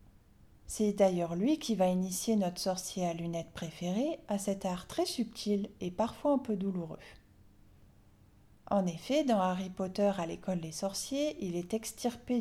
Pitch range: 175-225 Hz